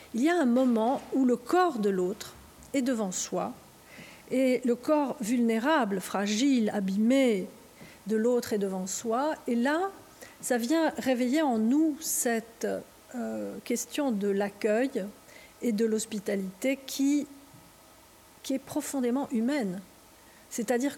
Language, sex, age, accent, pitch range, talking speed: French, female, 50-69, French, 215-270 Hz, 130 wpm